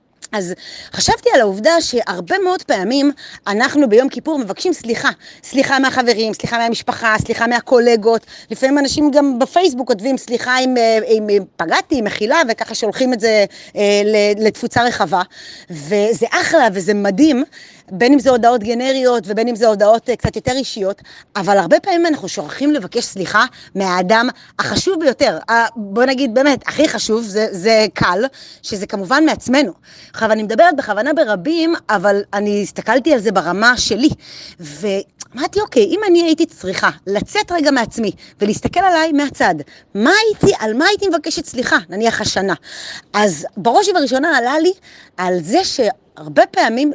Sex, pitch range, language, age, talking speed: female, 210-295 Hz, Hebrew, 30-49, 150 wpm